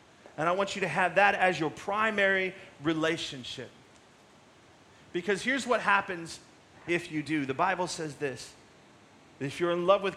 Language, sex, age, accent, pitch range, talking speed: English, male, 30-49, American, 140-195 Hz, 160 wpm